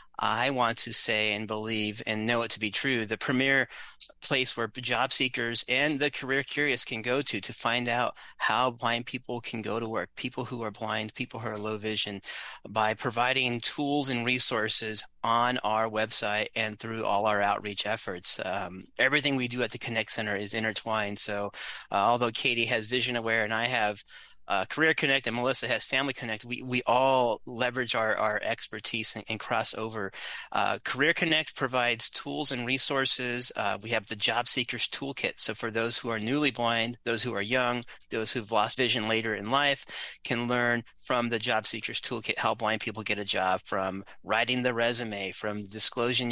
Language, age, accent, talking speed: English, 30-49, American, 190 wpm